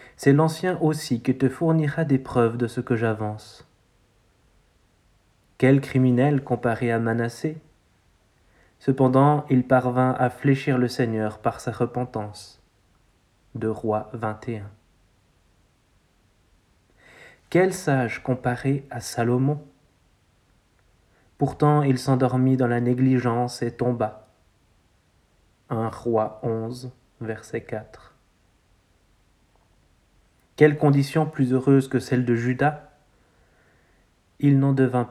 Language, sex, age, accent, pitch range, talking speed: French, male, 30-49, French, 110-130 Hz, 100 wpm